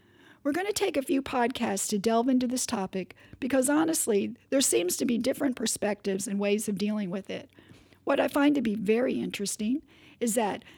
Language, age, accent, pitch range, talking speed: English, 50-69, American, 205-270 Hz, 195 wpm